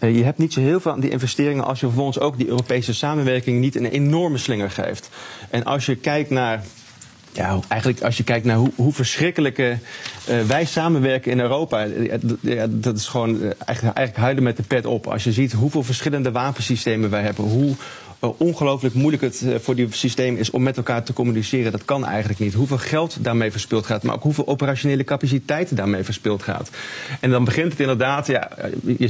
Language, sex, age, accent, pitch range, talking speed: Dutch, male, 40-59, Dutch, 110-130 Hz, 205 wpm